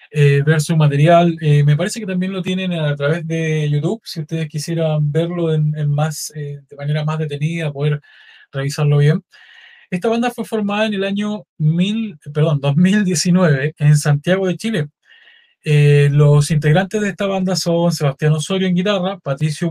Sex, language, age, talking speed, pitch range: male, Spanish, 20-39, 155 wpm, 155-195 Hz